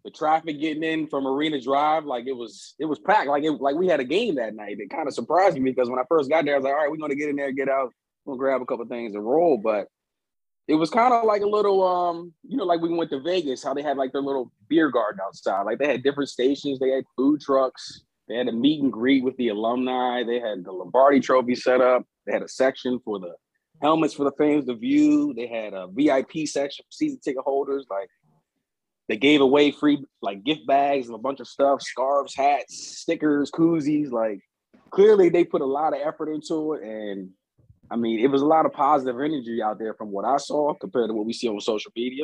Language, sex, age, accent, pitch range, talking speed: English, male, 30-49, American, 130-155 Hz, 250 wpm